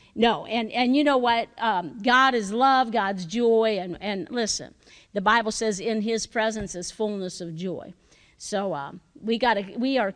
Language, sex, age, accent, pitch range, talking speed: English, female, 50-69, American, 195-240 Hz, 185 wpm